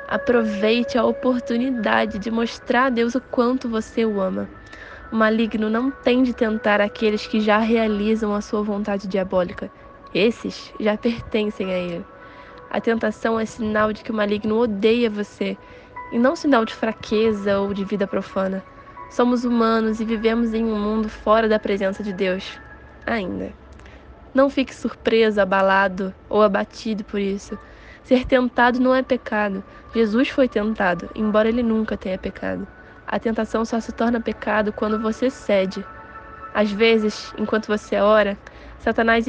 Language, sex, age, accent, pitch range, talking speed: Portuguese, female, 10-29, Brazilian, 210-240 Hz, 150 wpm